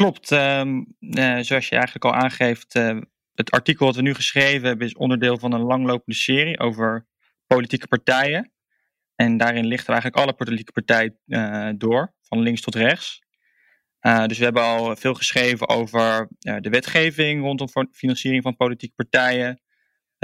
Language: Dutch